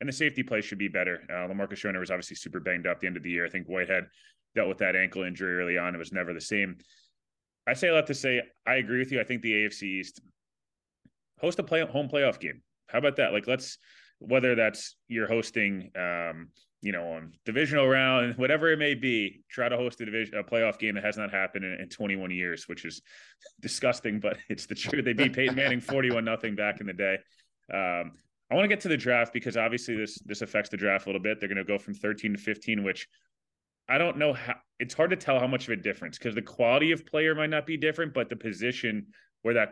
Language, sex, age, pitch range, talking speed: English, male, 20-39, 100-125 Hz, 245 wpm